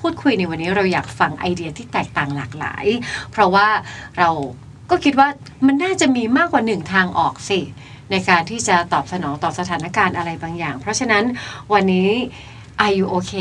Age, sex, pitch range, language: 30-49, female, 165-220 Hz, Thai